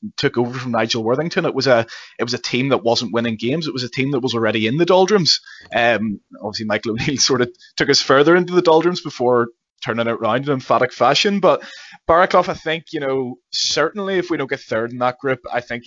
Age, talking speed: 20-39, 235 wpm